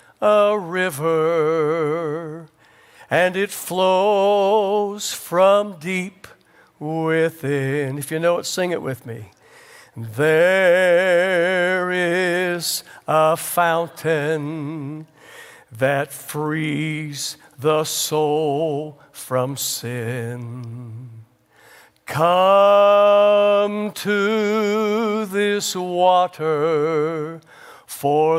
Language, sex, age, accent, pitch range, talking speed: English, male, 60-79, American, 150-185 Hz, 65 wpm